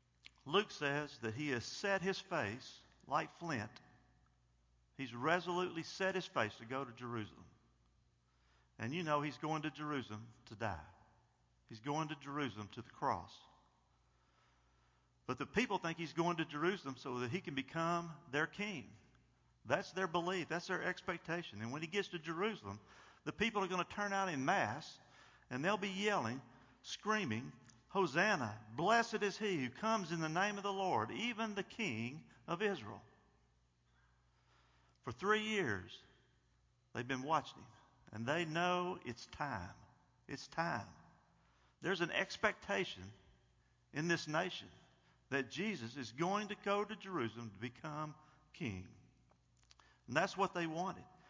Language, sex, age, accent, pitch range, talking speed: English, male, 50-69, American, 115-185 Hz, 150 wpm